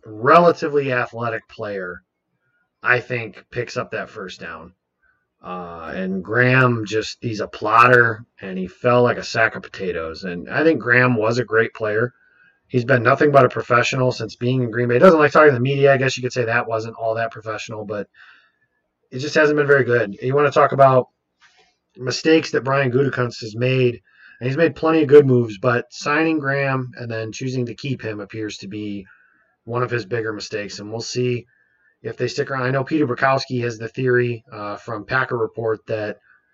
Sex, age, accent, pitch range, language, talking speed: male, 30-49, American, 105-130 Hz, English, 200 wpm